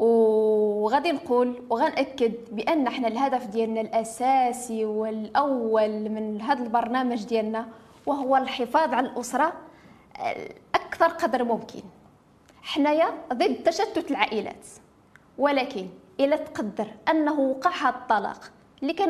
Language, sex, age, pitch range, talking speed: French, female, 20-39, 235-310 Hz, 90 wpm